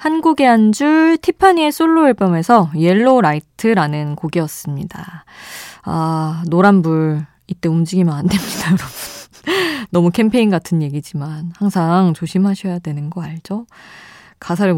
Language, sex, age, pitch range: Korean, female, 20-39, 160-225 Hz